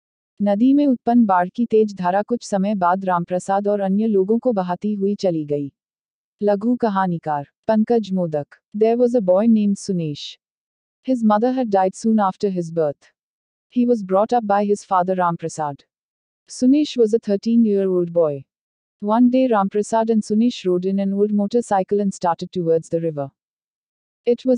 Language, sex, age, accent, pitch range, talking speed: Hindi, female, 50-69, native, 180-225 Hz, 120 wpm